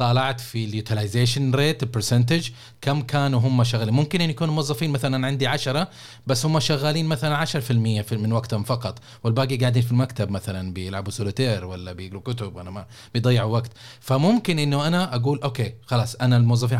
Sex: male